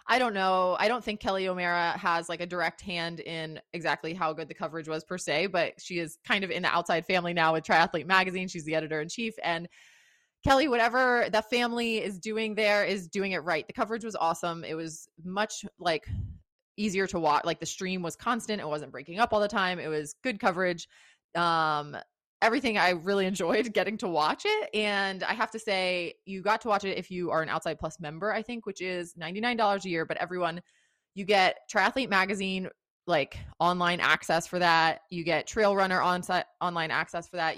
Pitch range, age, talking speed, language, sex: 170-215 Hz, 20-39, 210 wpm, English, female